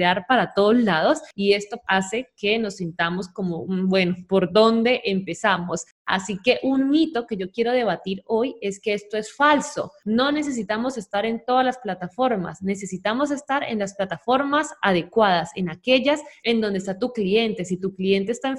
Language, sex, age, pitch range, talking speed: Spanish, female, 20-39, 190-250 Hz, 175 wpm